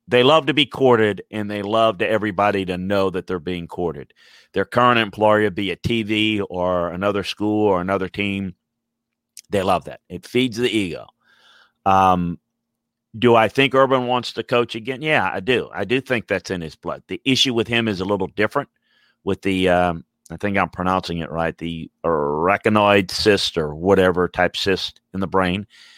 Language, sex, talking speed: English, male, 185 wpm